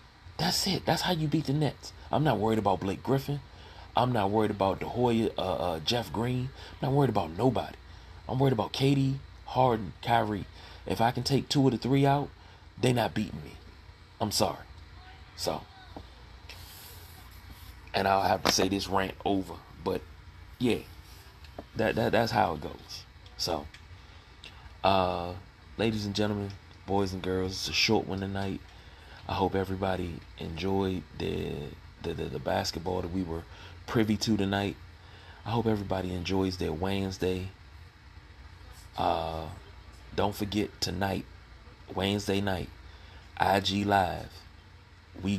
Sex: male